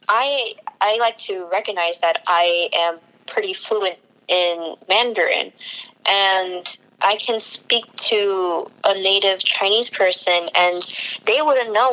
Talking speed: 125 wpm